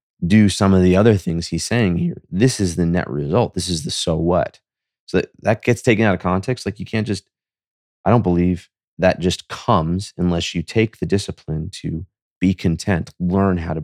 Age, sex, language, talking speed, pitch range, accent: 30-49, male, English, 205 wpm, 80-100 Hz, American